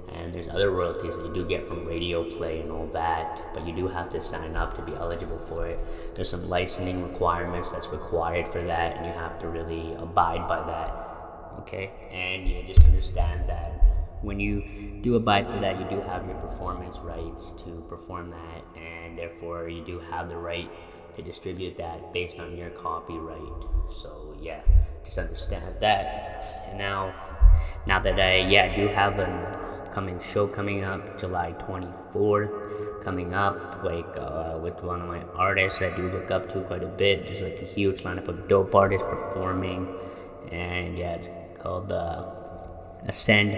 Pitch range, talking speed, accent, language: 85-95 Hz, 180 wpm, American, English